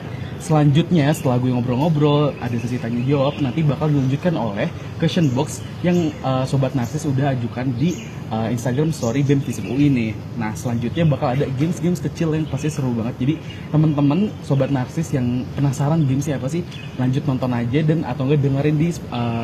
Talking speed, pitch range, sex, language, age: 165 wpm, 125-150 Hz, male, Indonesian, 20-39